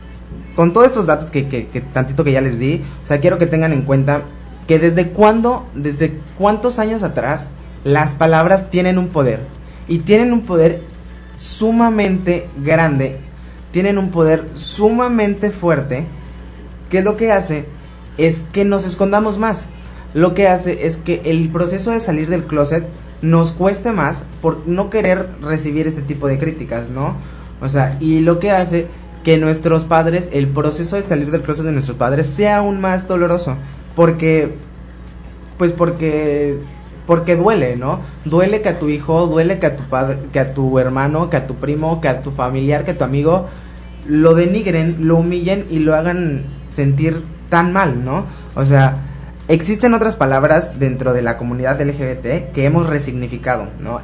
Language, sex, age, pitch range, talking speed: Spanish, male, 20-39, 140-180 Hz, 170 wpm